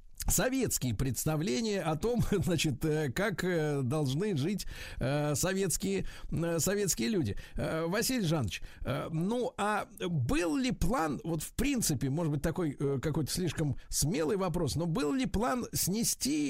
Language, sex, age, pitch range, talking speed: Russian, male, 50-69, 145-205 Hz, 120 wpm